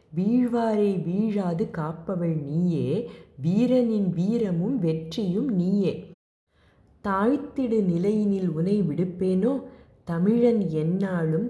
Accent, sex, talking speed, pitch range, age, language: native, female, 75 wpm, 160-205 Hz, 20-39, Tamil